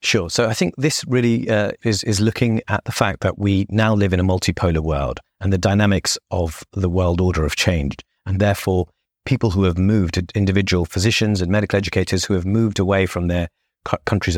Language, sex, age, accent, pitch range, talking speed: English, male, 30-49, British, 90-105 Hz, 200 wpm